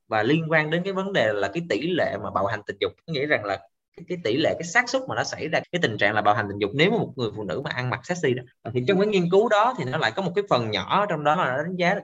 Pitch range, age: 130-185 Hz, 20-39